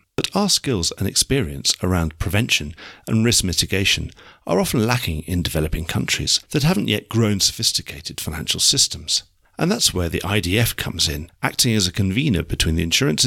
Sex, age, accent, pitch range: male, 50-69, British, 90-130 Hz